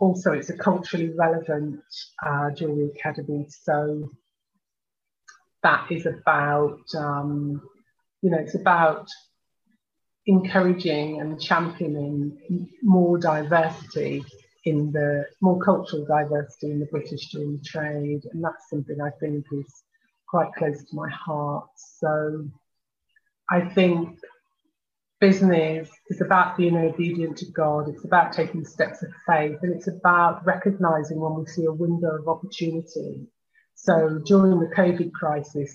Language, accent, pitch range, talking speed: English, British, 150-175 Hz, 125 wpm